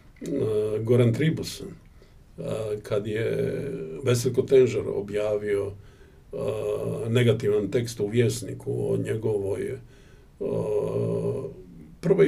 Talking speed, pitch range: 90 wpm, 120-185 Hz